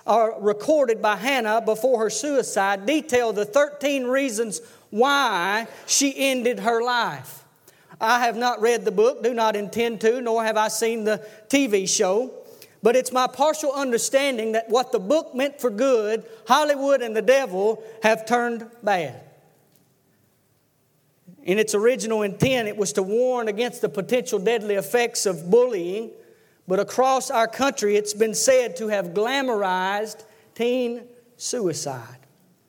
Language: English